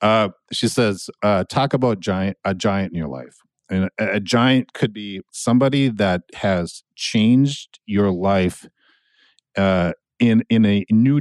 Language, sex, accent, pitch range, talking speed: English, male, American, 95-125 Hz, 155 wpm